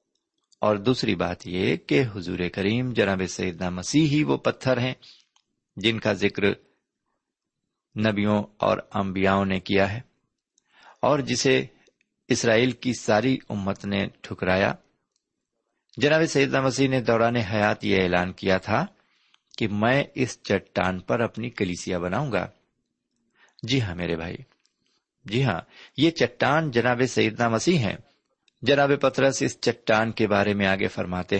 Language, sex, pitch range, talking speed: Urdu, male, 100-130 Hz, 135 wpm